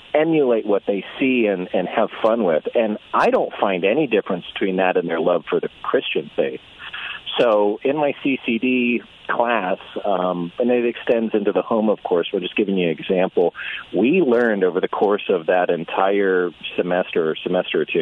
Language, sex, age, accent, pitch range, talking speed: English, male, 40-59, American, 90-115 Hz, 190 wpm